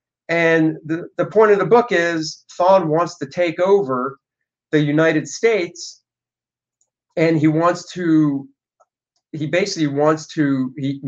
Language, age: English, 40-59